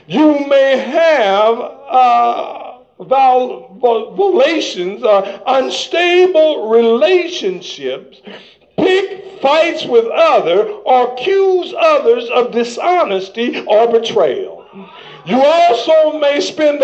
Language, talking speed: English, 95 wpm